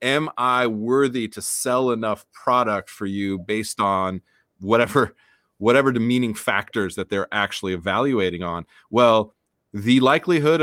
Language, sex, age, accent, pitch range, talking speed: English, male, 30-49, American, 110-140 Hz, 130 wpm